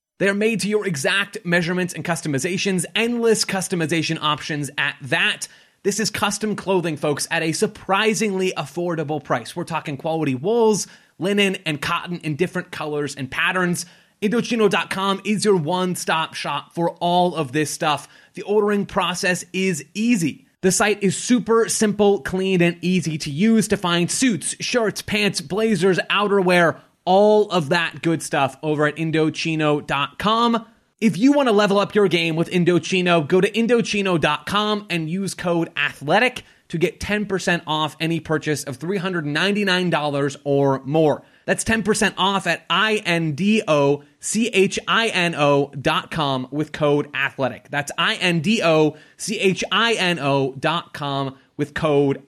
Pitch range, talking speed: 155-200 Hz, 130 wpm